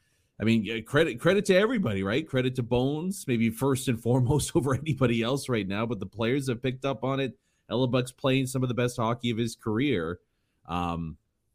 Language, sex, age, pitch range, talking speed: English, male, 30-49, 105-150 Hz, 205 wpm